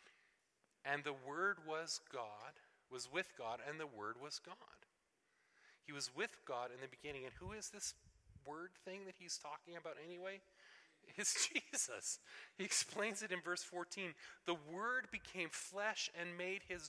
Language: English